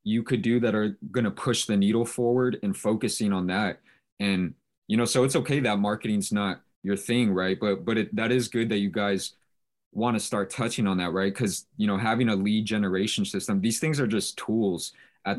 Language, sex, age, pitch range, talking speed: English, male, 20-39, 95-115 Hz, 220 wpm